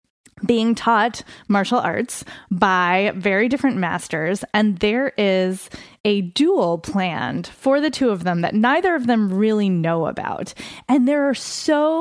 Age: 20-39